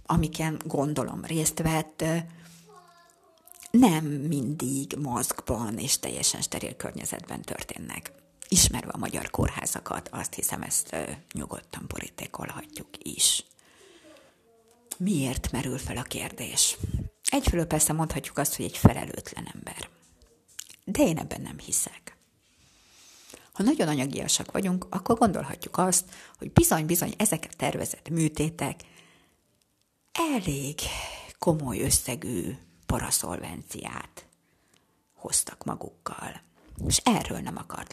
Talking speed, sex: 100 wpm, female